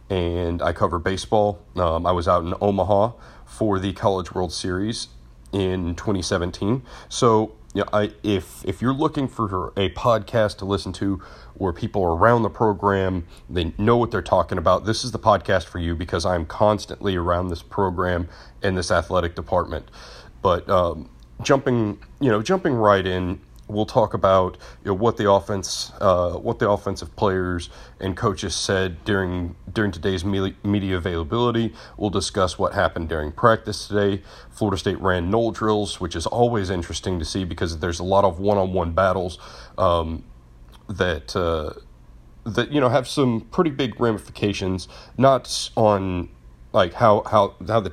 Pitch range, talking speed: 90-105 Hz, 165 wpm